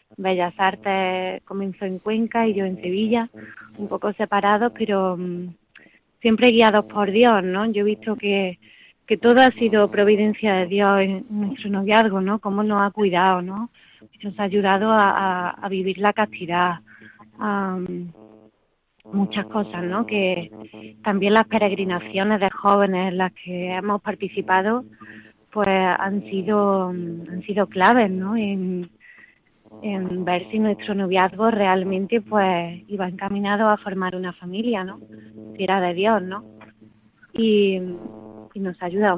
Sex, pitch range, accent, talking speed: female, 185-210 Hz, Spanish, 145 wpm